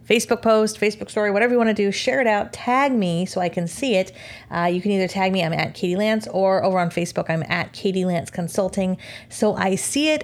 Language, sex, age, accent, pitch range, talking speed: English, female, 30-49, American, 180-225 Hz, 240 wpm